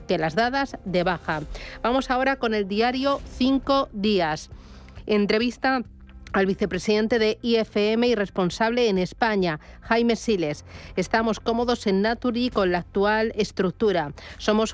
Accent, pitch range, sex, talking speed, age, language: Spanish, 190-230 Hz, female, 130 wpm, 40-59, Spanish